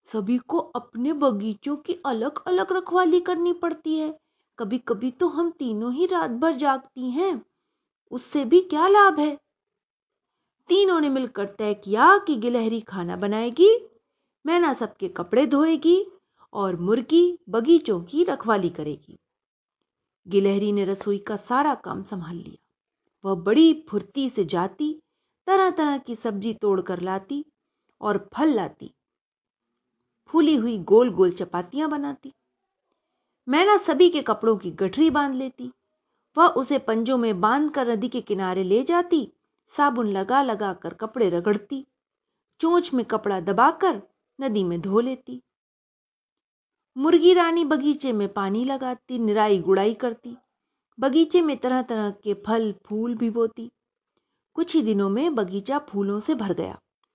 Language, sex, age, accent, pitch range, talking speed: Hindi, female, 30-49, native, 210-315 Hz, 140 wpm